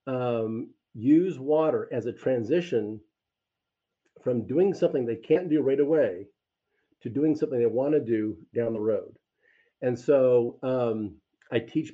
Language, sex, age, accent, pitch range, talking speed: English, male, 50-69, American, 115-155 Hz, 145 wpm